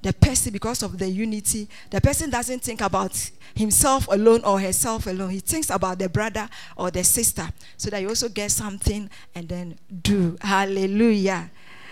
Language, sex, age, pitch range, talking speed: English, female, 40-59, 185-230 Hz, 170 wpm